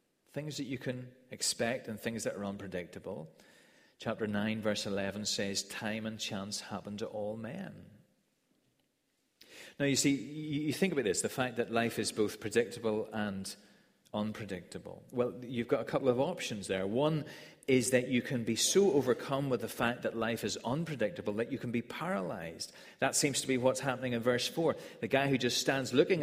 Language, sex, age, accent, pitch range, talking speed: English, male, 40-59, British, 110-155 Hz, 185 wpm